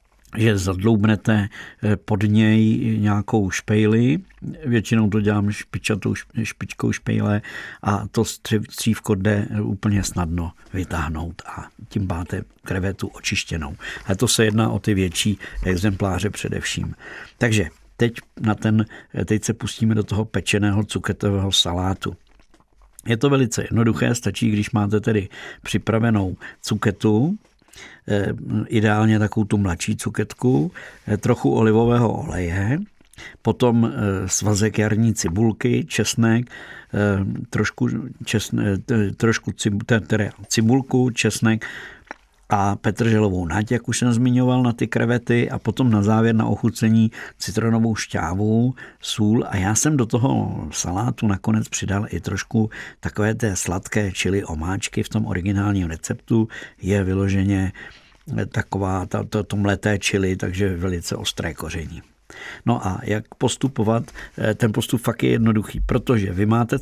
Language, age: Czech, 60-79